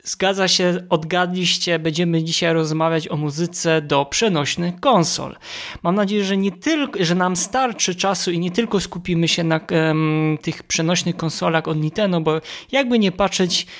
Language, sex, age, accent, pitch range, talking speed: Polish, male, 20-39, native, 160-180 Hz, 155 wpm